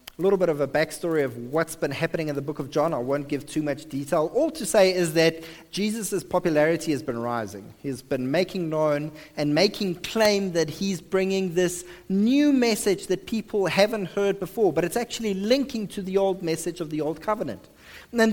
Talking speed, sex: 205 wpm, male